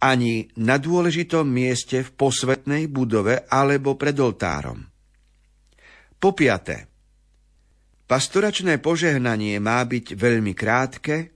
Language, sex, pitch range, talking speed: Slovak, male, 105-140 Hz, 95 wpm